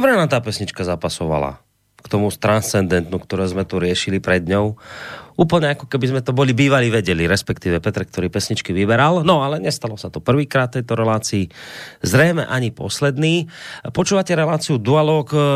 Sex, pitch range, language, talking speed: male, 100-125 Hz, Slovak, 160 wpm